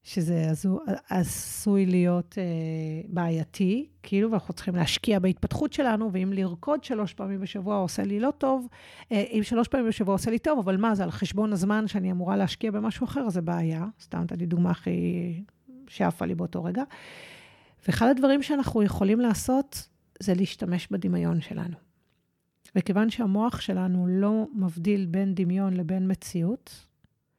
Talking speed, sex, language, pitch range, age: 155 wpm, female, Hebrew, 175-215 Hz, 40-59